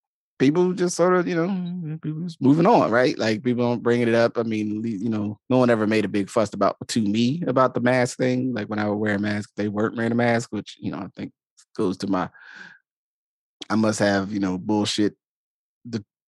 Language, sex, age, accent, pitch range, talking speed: English, male, 20-39, American, 100-125 Hz, 230 wpm